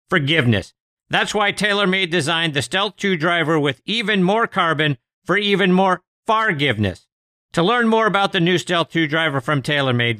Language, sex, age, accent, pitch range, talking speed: English, male, 50-69, American, 130-190 Hz, 165 wpm